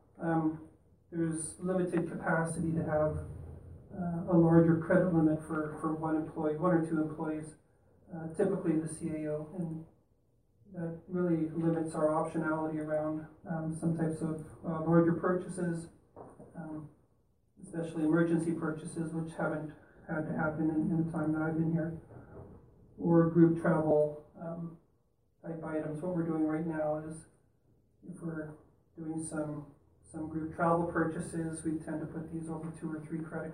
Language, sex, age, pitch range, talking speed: English, male, 30-49, 155-165 Hz, 150 wpm